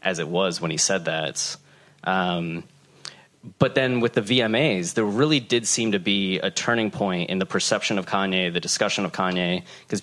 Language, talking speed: English, 190 wpm